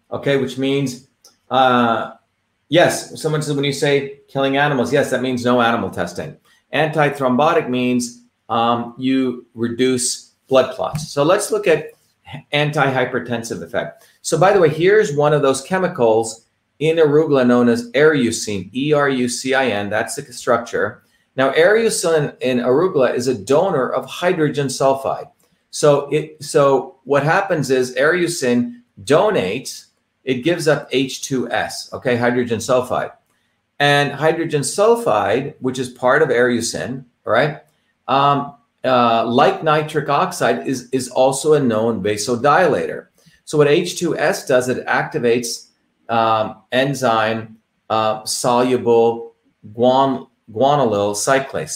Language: English